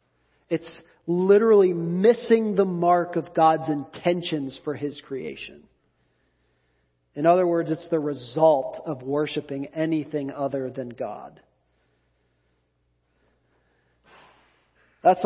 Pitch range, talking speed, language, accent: 140-170 Hz, 95 wpm, English, American